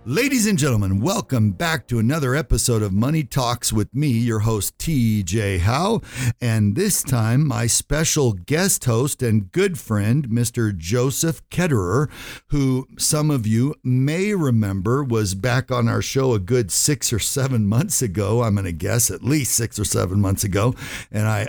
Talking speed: 170 wpm